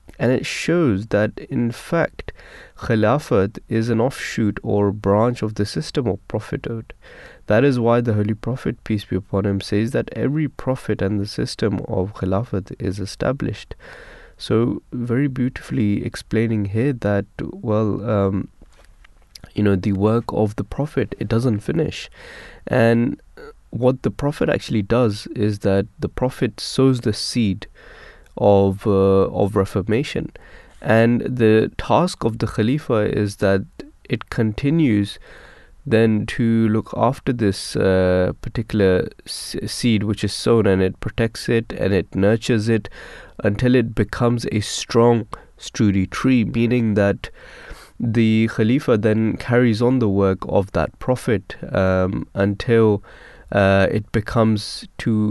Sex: male